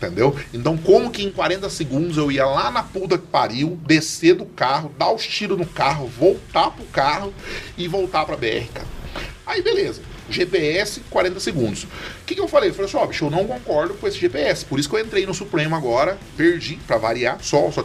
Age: 30-49